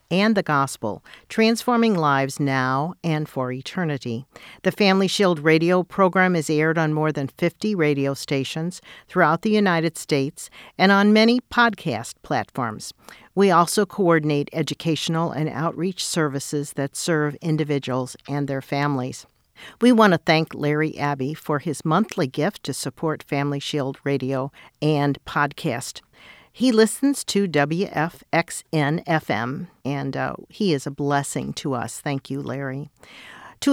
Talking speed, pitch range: 135 wpm, 140-185 Hz